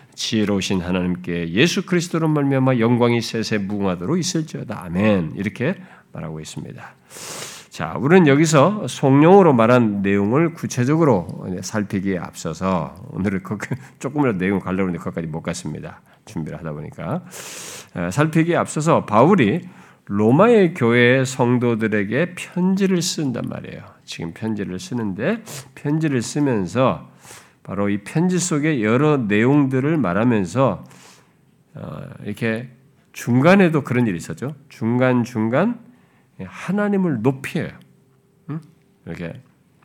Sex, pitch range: male, 105-165 Hz